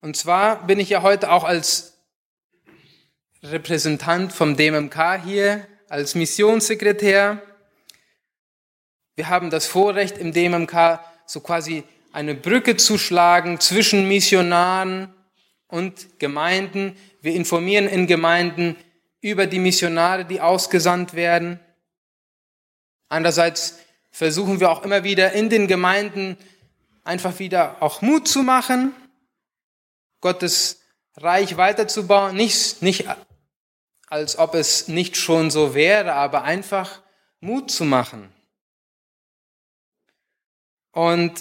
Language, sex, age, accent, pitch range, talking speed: German, male, 20-39, German, 170-200 Hz, 105 wpm